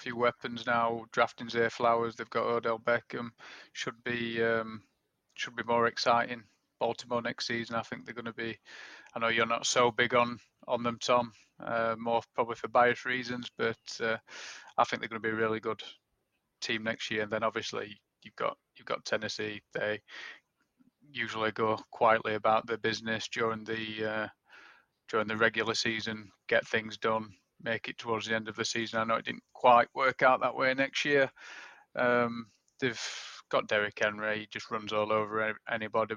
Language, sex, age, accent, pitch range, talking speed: English, male, 20-39, British, 110-120 Hz, 185 wpm